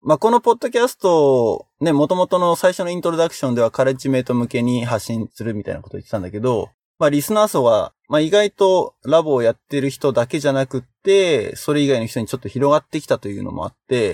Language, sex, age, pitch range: Japanese, male, 20-39, 115-145 Hz